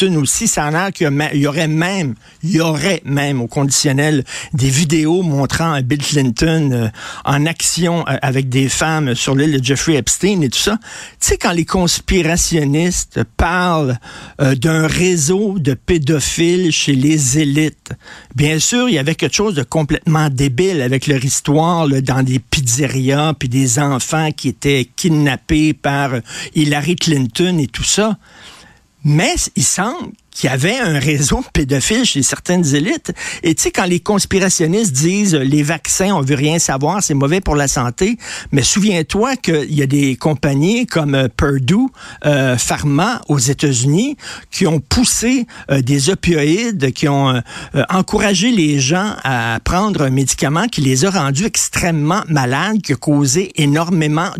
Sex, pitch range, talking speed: male, 140-180 Hz, 160 wpm